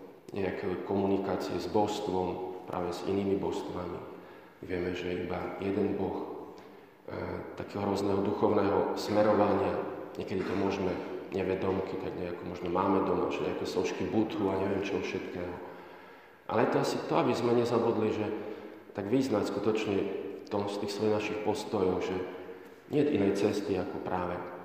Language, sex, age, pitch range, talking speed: Slovak, male, 40-59, 90-105 Hz, 150 wpm